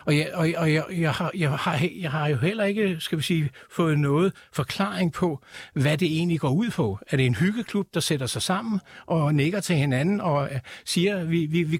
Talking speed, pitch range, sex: 225 wpm, 145-185 Hz, male